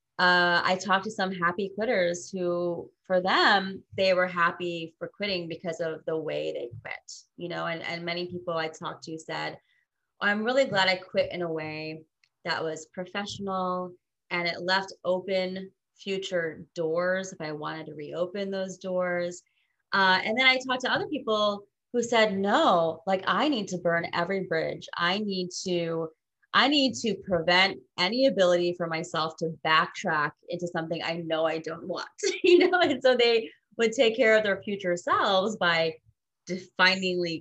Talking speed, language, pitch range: 170 wpm, English, 165-200 Hz